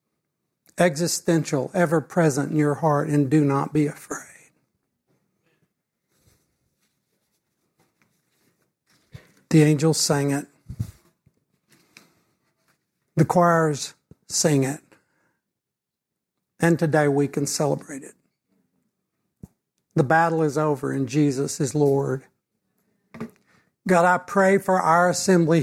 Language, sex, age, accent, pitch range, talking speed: English, male, 60-79, American, 155-180 Hz, 90 wpm